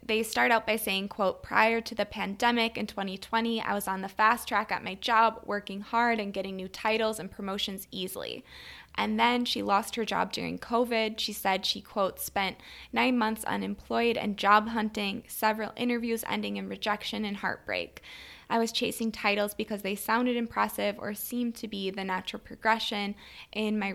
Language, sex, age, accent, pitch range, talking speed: English, female, 20-39, American, 195-225 Hz, 185 wpm